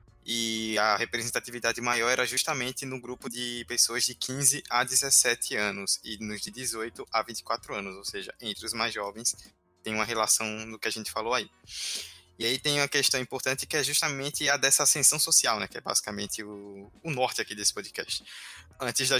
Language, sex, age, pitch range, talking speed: Portuguese, male, 20-39, 110-140 Hz, 195 wpm